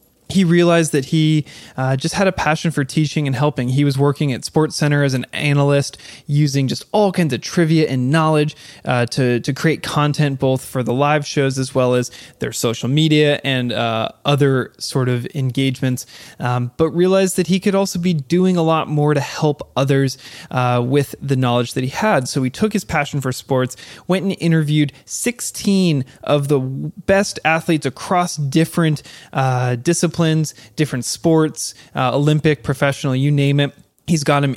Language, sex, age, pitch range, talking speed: English, male, 20-39, 130-155 Hz, 180 wpm